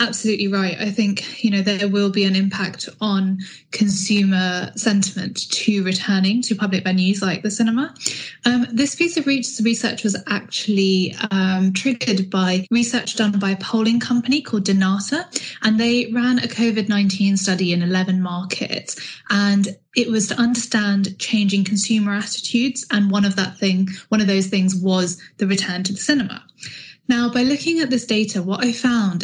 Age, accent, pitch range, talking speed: 10-29, British, 195-235 Hz, 165 wpm